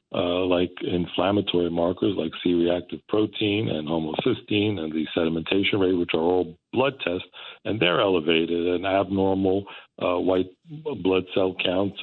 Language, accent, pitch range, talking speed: English, American, 85-95 Hz, 140 wpm